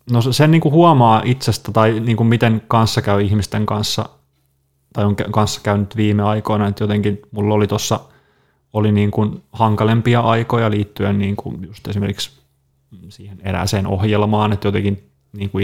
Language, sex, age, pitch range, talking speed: Finnish, male, 30-49, 105-115 Hz, 140 wpm